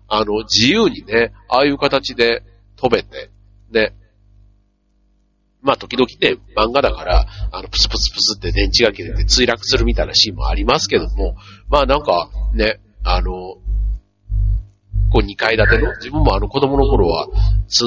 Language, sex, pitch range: Japanese, male, 100-125 Hz